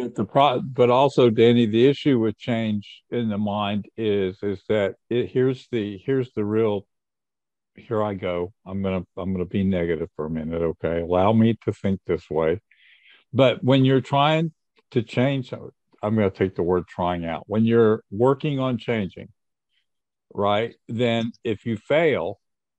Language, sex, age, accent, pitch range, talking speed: English, male, 50-69, American, 100-120 Hz, 165 wpm